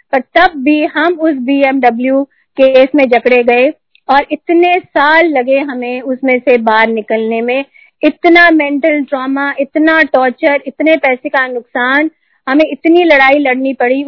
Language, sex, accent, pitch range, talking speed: Hindi, female, native, 245-310 Hz, 145 wpm